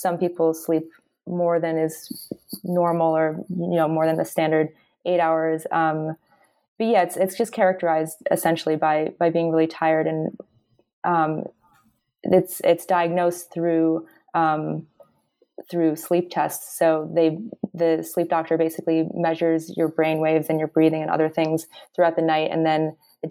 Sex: female